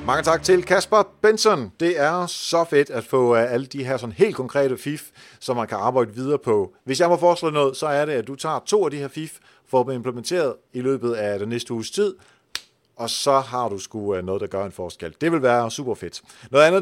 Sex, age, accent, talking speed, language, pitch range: male, 40-59, native, 245 wpm, Danish, 125-175 Hz